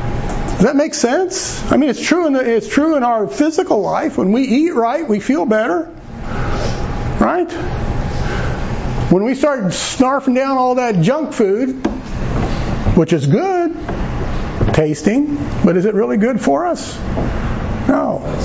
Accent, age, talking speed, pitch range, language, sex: American, 50-69, 145 wpm, 200-255 Hz, English, male